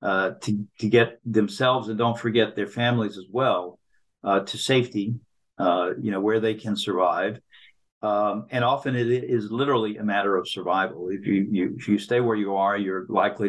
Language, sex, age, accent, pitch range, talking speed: English, male, 50-69, American, 100-120 Hz, 190 wpm